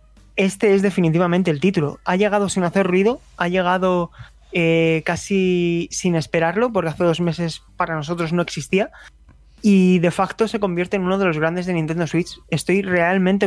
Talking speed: 175 wpm